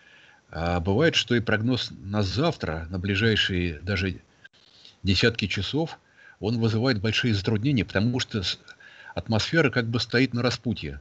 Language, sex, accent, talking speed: Russian, male, native, 130 wpm